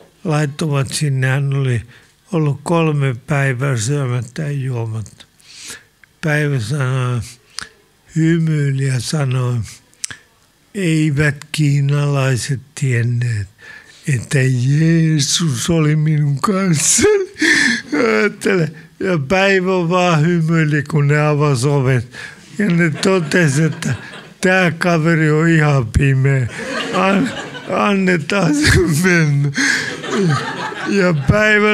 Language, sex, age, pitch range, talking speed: Finnish, male, 60-79, 135-170 Hz, 85 wpm